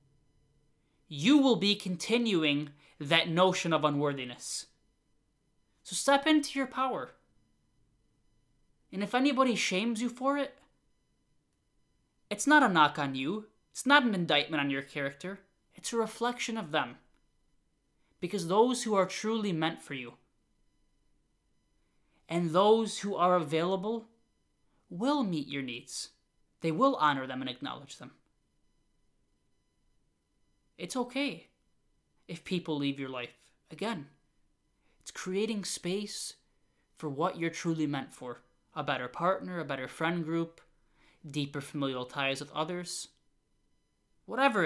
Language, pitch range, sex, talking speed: English, 145-210 Hz, male, 125 wpm